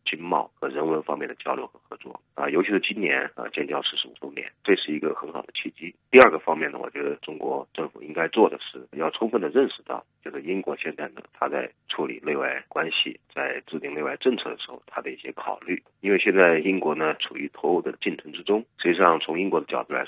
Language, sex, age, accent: Chinese, male, 40-59, native